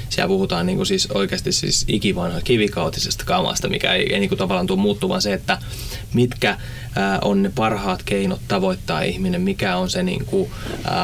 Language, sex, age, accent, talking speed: Finnish, male, 20-39, native, 190 wpm